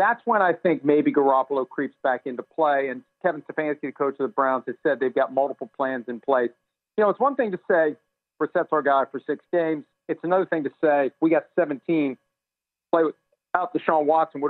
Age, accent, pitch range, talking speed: 40-59, American, 135-165 Hz, 215 wpm